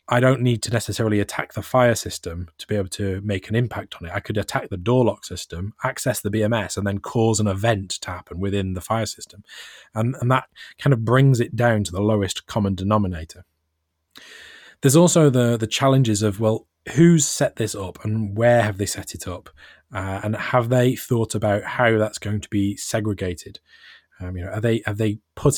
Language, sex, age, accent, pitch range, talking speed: English, male, 20-39, British, 100-115 Hz, 210 wpm